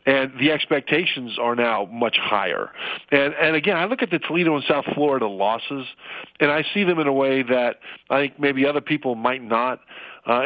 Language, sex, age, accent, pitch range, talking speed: English, male, 50-69, American, 125-150 Hz, 200 wpm